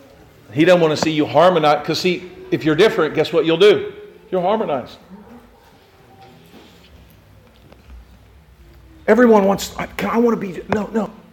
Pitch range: 155-215 Hz